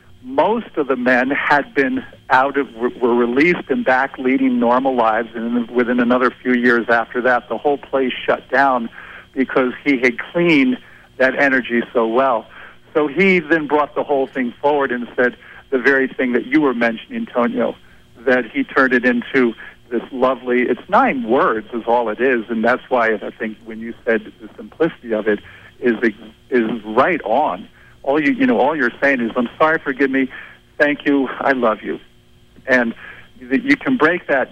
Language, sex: English, male